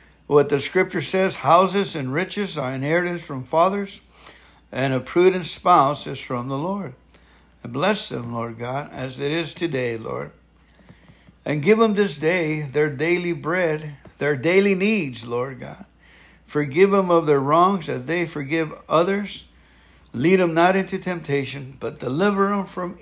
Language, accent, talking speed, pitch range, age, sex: English, American, 155 wpm, 130-195 Hz, 60-79, male